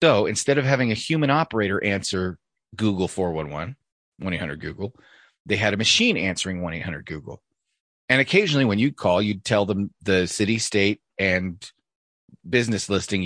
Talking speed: 145 wpm